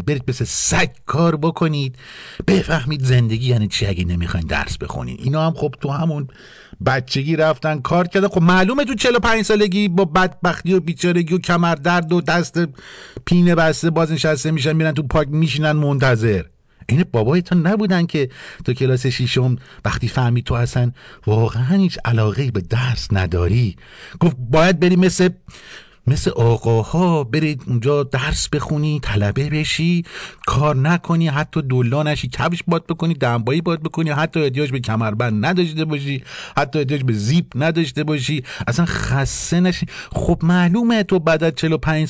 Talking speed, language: 150 wpm, Persian